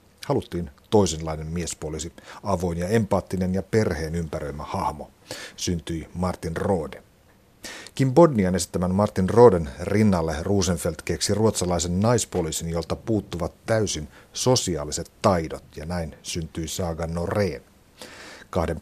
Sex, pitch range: male, 85-100 Hz